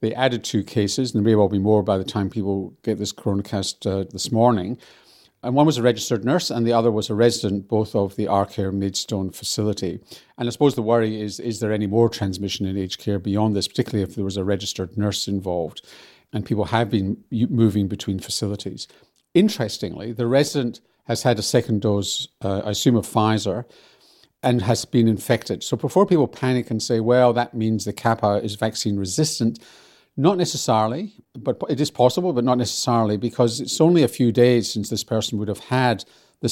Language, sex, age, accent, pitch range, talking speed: English, male, 50-69, British, 105-125 Hz, 200 wpm